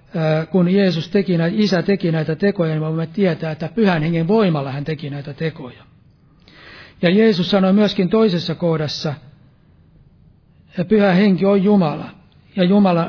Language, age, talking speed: Finnish, 60-79, 145 wpm